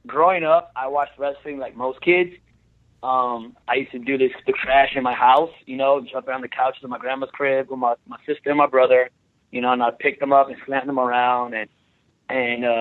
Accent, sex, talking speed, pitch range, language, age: American, male, 230 wpm, 130-160 Hz, English, 20-39